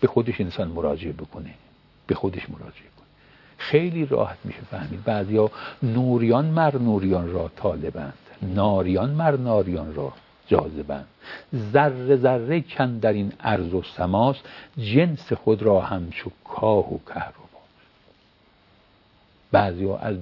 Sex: male